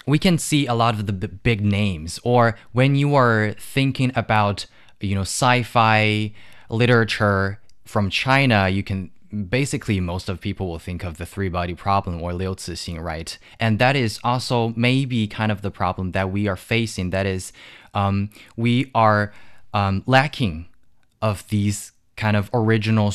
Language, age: English, 20-39